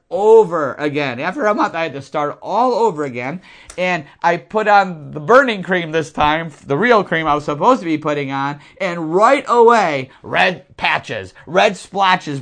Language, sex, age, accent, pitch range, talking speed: English, male, 50-69, American, 170-235 Hz, 185 wpm